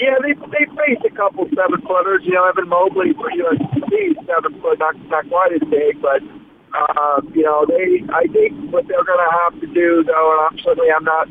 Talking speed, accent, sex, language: 220 wpm, American, male, English